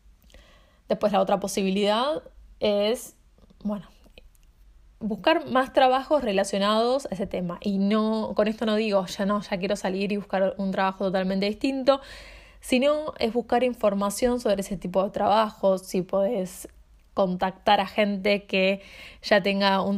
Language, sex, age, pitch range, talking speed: Spanish, female, 20-39, 195-235 Hz, 145 wpm